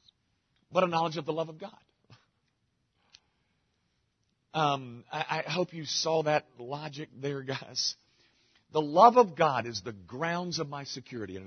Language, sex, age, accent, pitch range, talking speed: English, male, 50-69, American, 115-165 Hz, 150 wpm